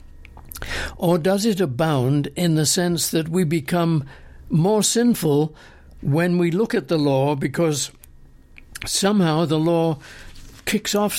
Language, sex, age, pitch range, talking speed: English, male, 60-79, 130-175 Hz, 130 wpm